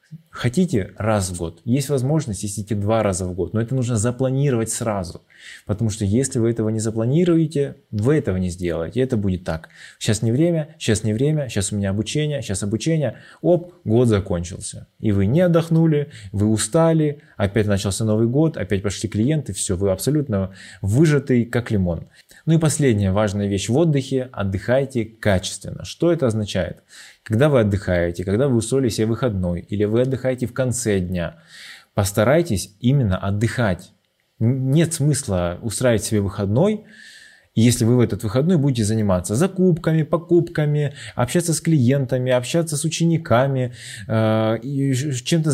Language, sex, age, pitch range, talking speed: Russian, male, 20-39, 105-140 Hz, 150 wpm